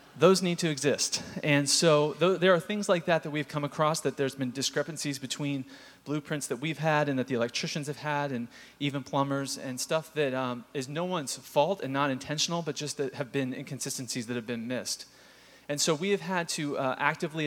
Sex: male